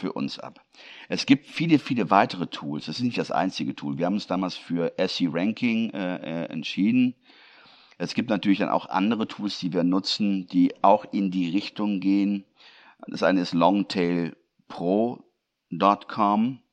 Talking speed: 160 wpm